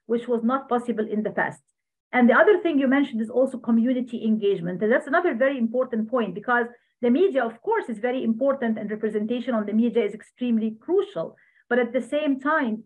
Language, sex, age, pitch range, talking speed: Arabic, female, 50-69, 220-255 Hz, 200 wpm